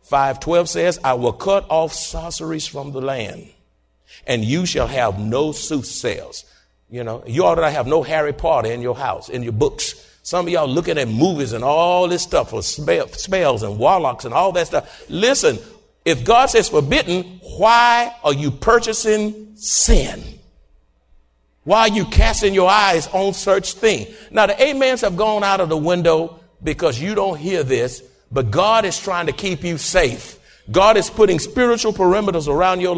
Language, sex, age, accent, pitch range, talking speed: English, male, 60-79, American, 135-200 Hz, 180 wpm